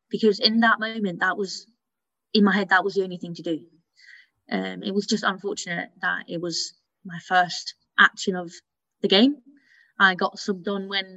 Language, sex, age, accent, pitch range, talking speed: English, female, 20-39, British, 180-210 Hz, 190 wpm